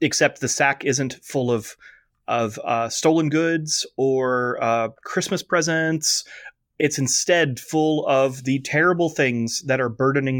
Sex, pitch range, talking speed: male, 125-150 Hz, 140 wpm